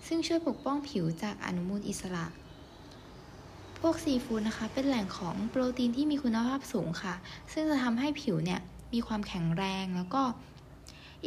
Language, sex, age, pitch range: Thai, female, 10-29, 185-255 Hz